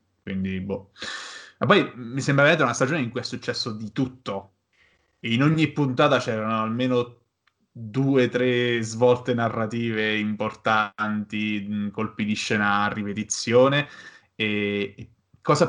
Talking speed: 120 wpm